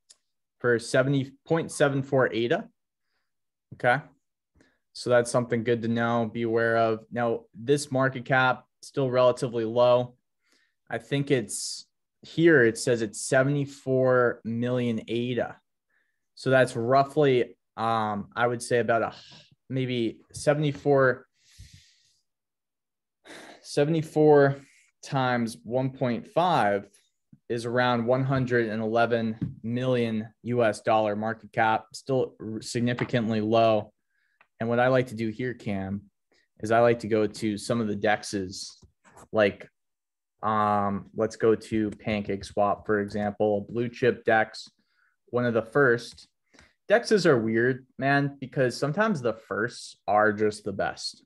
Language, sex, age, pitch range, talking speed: English, male, 20-39, 110-130 Hz, 120 wpm